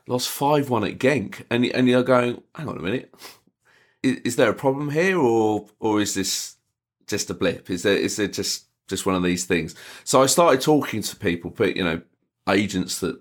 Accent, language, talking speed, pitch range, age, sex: British, English, 210 wpm, 90-125 Hz, 30-49, male